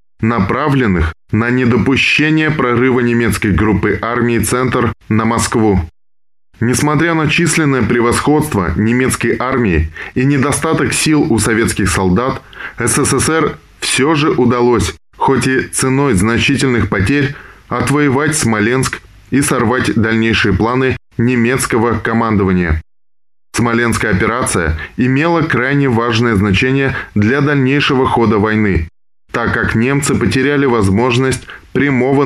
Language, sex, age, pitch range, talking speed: Russian, male, 20-39, 100-130 Hz, 100 wpm